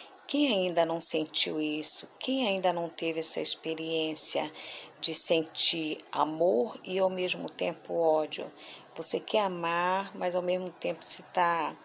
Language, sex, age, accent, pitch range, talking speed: Portuguese, female, 40-59, Brazilian, 160-185 Hz, 140 wpm